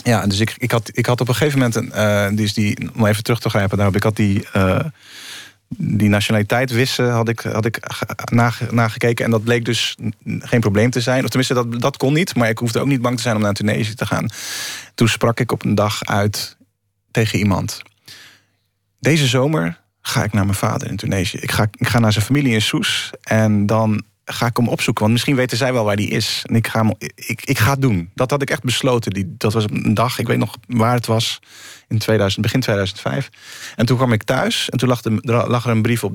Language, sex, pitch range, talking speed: Dutch, male, 105-120 Hz, 235 wpm